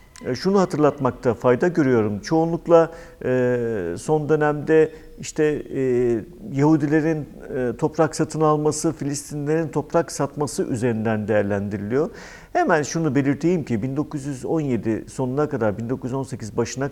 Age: 50-69